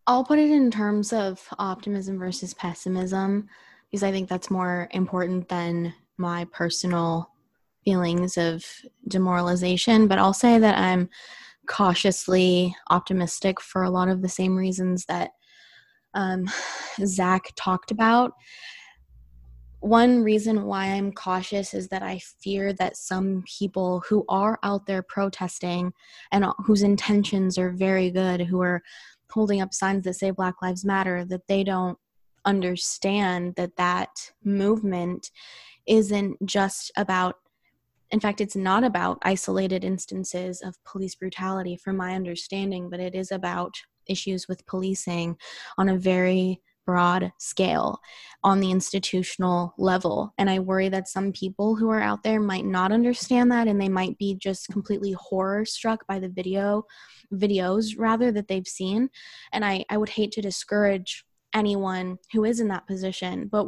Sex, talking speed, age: female, 145 wpm, 20-39